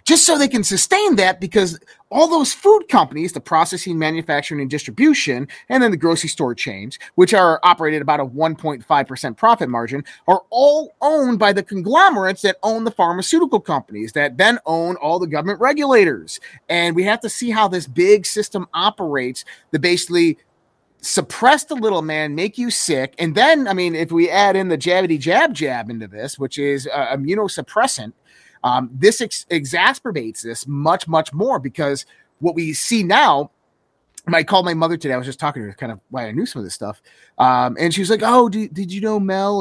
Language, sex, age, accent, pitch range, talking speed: English, male, 30-49, American, 150-225 Hz, 195 wpm